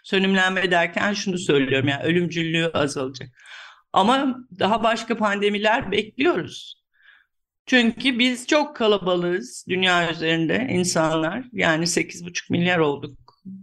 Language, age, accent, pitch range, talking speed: Turkish, 50-69, native, 160-220 Hz, 100 wpm